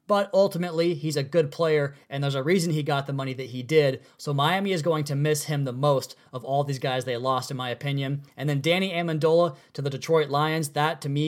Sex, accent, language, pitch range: male, American, English, 140-160 Hz